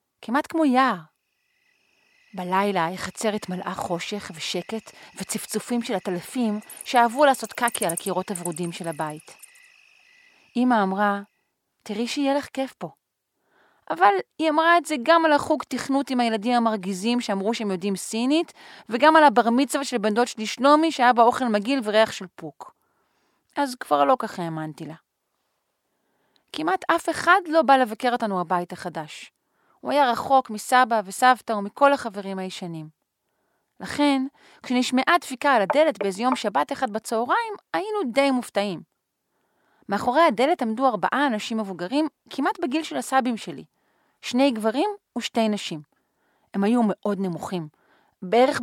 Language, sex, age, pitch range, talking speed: Hebrew, female, 30-49, 200-280 Hz, 140 wpm